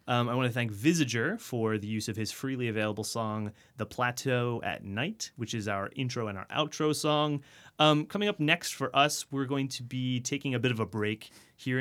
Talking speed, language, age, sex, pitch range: 220 wpm, English, 30-49, male, 110-140 Hz